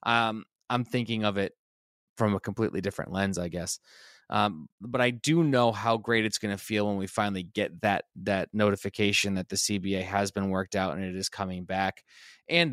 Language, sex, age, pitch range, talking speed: English, male, 20-39, 100-115 Hz, 205 wpm